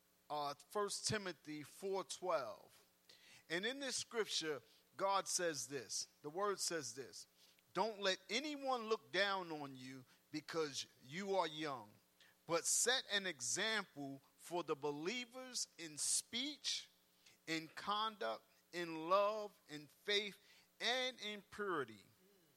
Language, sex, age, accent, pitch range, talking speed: English, male, 50-69, American, 155-210 Hz, 115 wpm